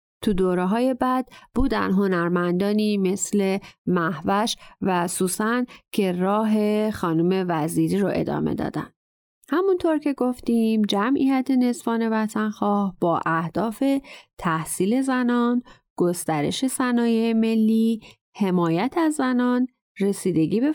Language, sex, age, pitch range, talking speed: English, female, 30-49, 175-255 Hz, 100 wpm